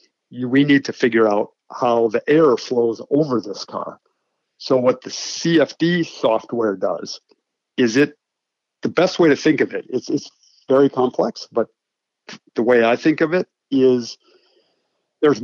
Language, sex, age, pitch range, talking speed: English, male, 50-69, 125-160 Hz, 150 wpm